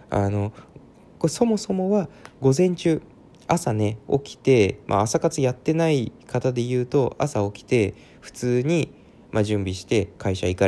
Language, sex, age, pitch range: Japanese, male, 20-39, 100-145 Hz